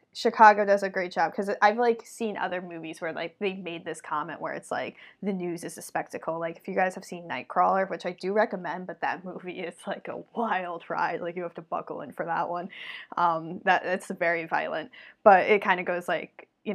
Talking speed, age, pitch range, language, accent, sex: 235 wpm, 10-29, 175-210 Hz, English, American, female